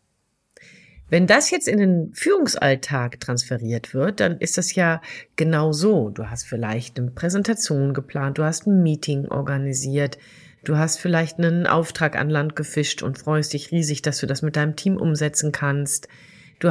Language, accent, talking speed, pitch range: German, German, 165 wpm, 145-175 Hz